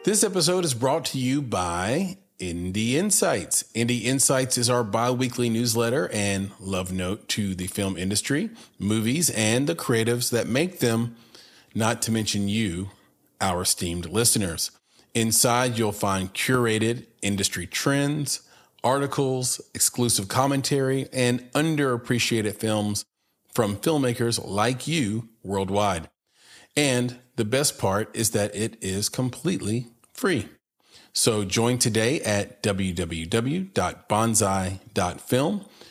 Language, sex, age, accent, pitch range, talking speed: English, male, 40-59, American, 105-130 Hz, 115 wpm